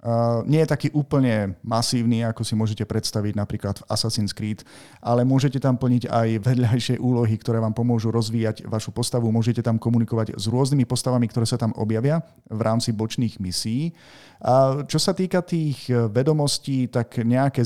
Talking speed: 165 wpm